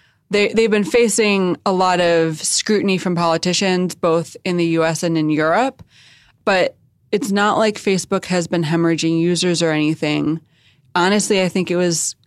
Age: 20-39